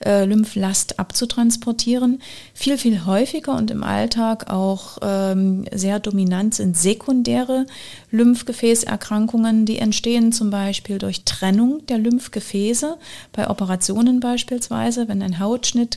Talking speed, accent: 110 wpm, German